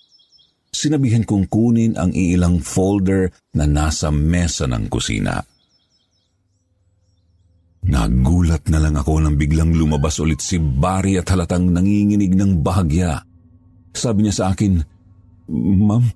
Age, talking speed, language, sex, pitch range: 50-69, 115 wpm, Filipino, male, 85-110 Hz